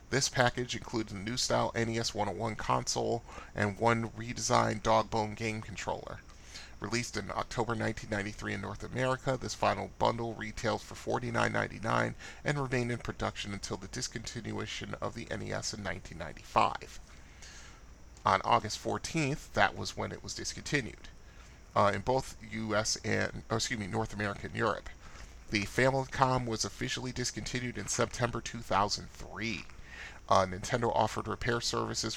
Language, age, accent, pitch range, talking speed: English, 30-49, American, 100-115 Hz, 145 wpm